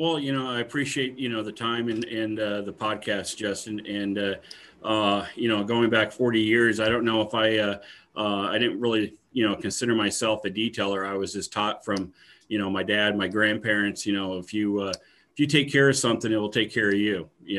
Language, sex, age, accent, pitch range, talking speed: English, male, 40-59, American, 100-110 Hz, 230 wpm